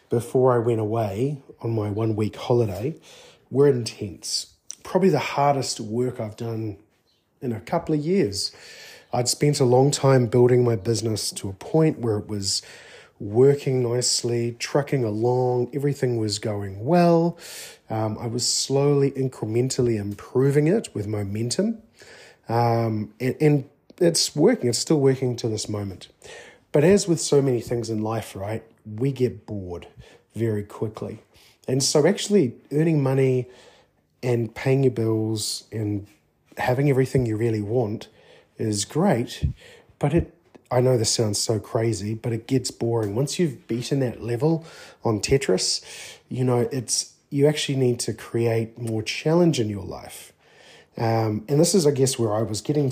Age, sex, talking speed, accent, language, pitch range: 30-49, male, 155 wpm, Australian, English, 110-140 Hz